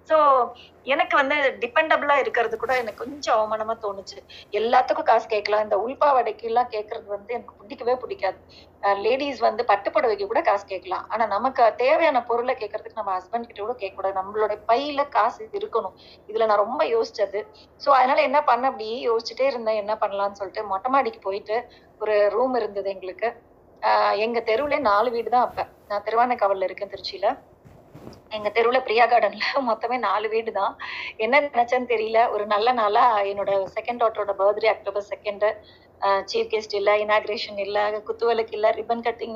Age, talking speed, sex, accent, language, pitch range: 30-49, 155 wpm, female, native, Tamil, 205-250 Hz